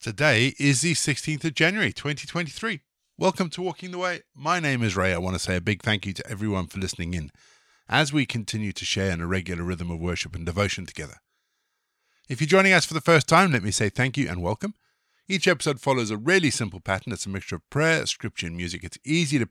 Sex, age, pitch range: male, 50-69, 95-140 Hz